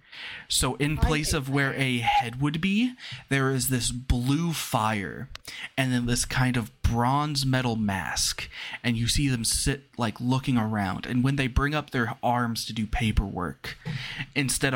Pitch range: 105-135 Hz